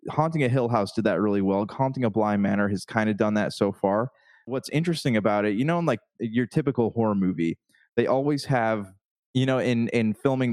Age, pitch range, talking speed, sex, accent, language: 20-39, 105-125 Hz, 220 wpm, male, American, English